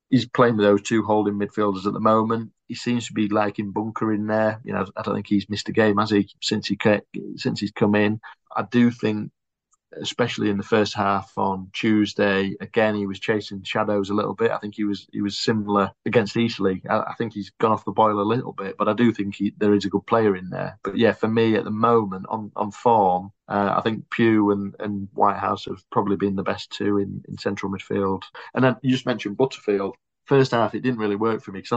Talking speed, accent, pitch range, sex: 240 wpm, British, 100-110 Hz, male